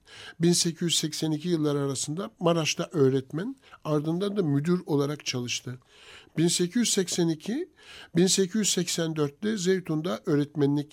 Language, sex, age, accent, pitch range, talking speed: Turkish, male, 60-79, native, 145-185 Hz, 70 wpm